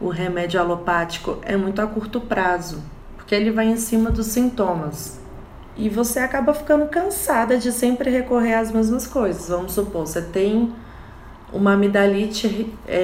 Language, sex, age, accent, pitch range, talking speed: Portuguese, female, 20-39, Brazilian, 160-205 Hz, 145 wpm